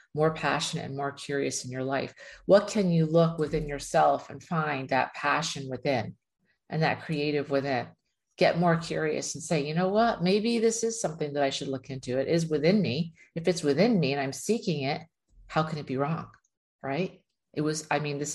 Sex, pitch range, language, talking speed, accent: female, 140-165 Hz, English, 205 wpm, American